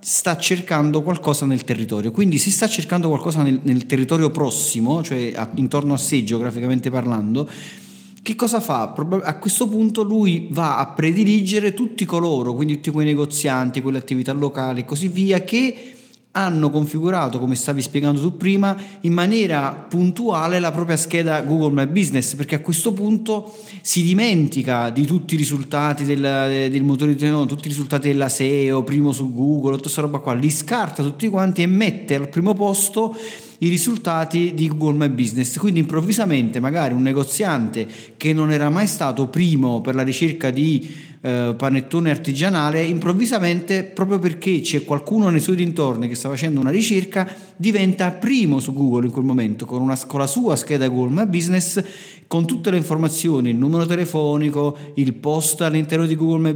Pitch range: 140-180 Hz